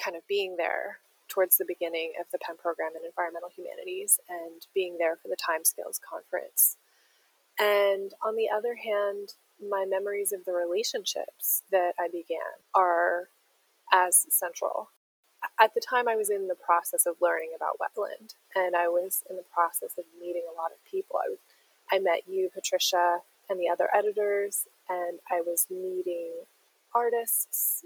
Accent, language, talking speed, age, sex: American, English, 160 wpm, 20-39, female